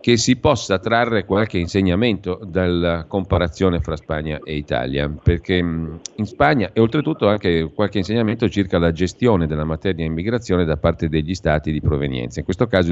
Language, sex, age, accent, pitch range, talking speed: Italian, male, 40-59, native, 80-95 Hz, 165 wpm